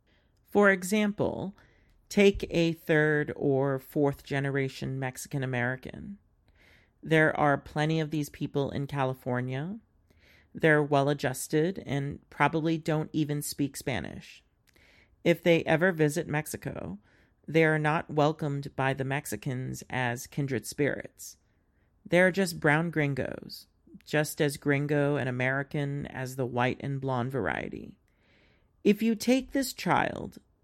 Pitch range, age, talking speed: 130-165 Hz, 40-59, 120 wpm